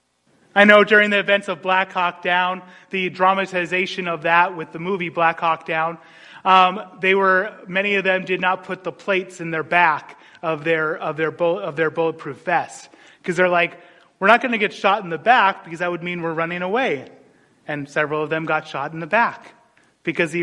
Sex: male